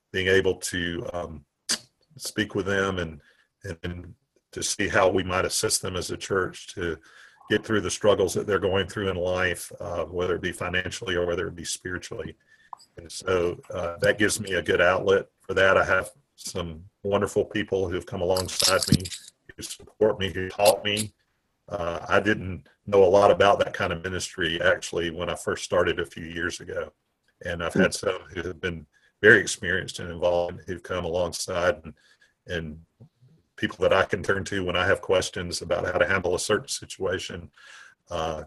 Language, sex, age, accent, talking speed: English, male, 40-59, American, 190 wpm